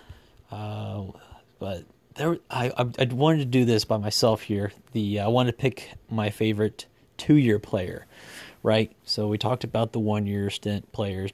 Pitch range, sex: 105-125 Hz, male